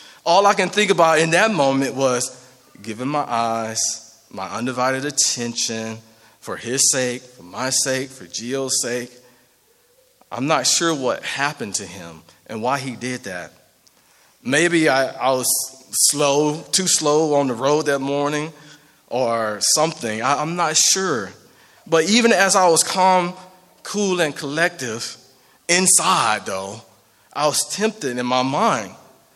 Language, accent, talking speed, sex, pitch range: English, American, 145 wpm, male, 125-165 Hz